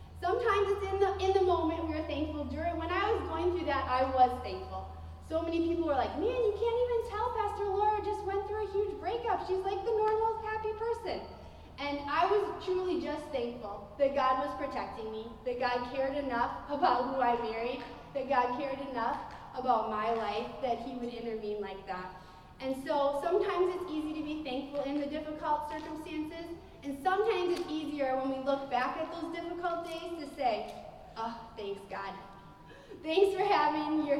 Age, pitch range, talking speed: 20-39, 250-345 Hz, 190 wpm